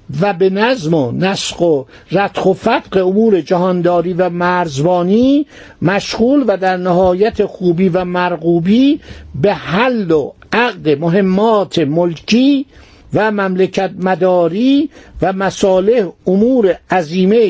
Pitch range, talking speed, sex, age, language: 180-215 Hz, 110 wpm, male, 60-79, Persian